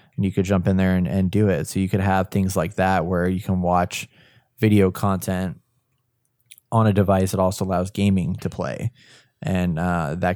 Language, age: English, 20-39